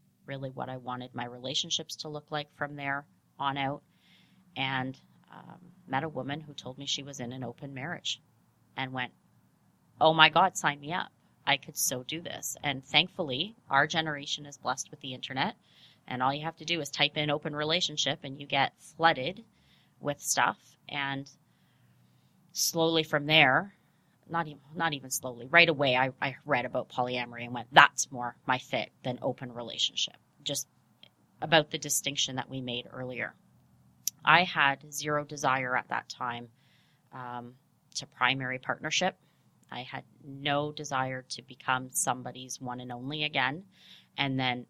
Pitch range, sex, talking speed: 125-150 Hz, female, 165 wpm